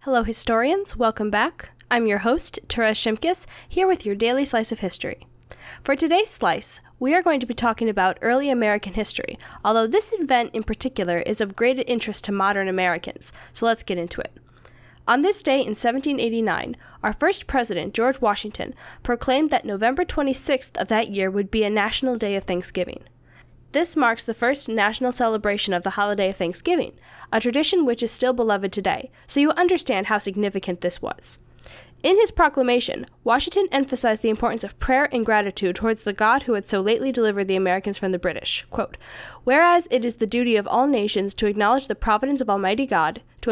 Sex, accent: female, American